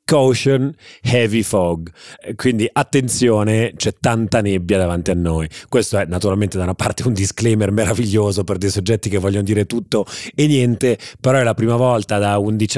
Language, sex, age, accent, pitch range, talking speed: Italian, male, 30-49, native, 100-120 Hz, 170 wpm